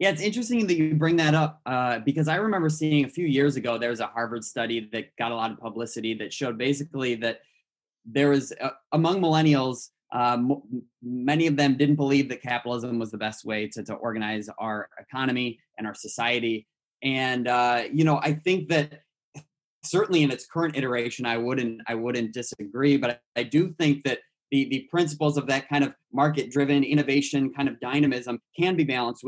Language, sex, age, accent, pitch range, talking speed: English, male, 20-39, American, 120-145 Hz, 195 wpm